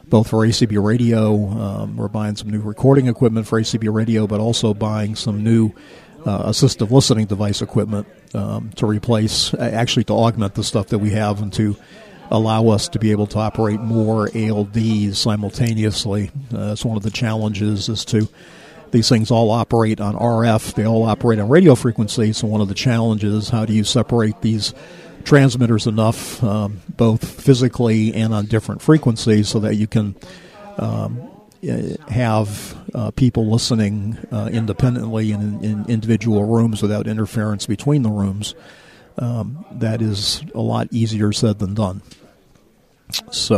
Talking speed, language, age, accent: 160 wpm, English, 50-69, American